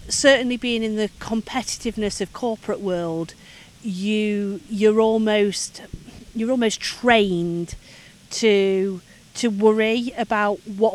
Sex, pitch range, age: female, 190-230 Hz, 40-59